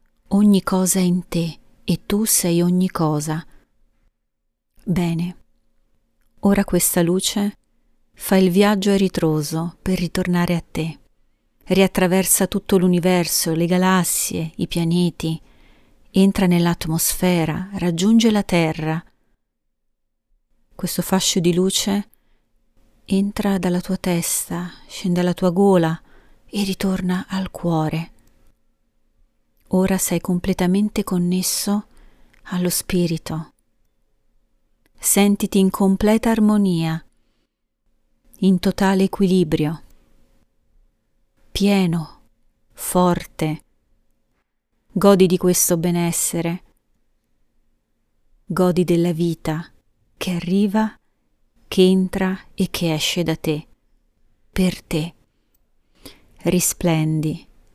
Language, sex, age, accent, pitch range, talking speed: Italian, female, 30-49, native, 165-190 Hz, 85 wpm